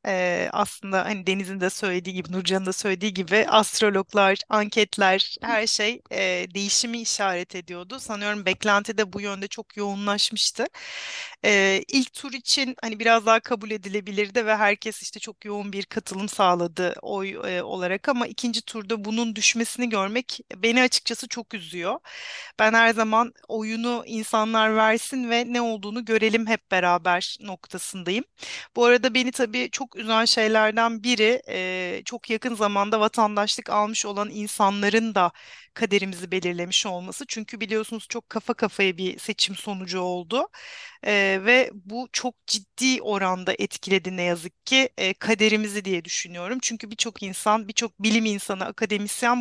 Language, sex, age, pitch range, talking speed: Turkish, female, 40-59, 195-230 Hz, 145 wpm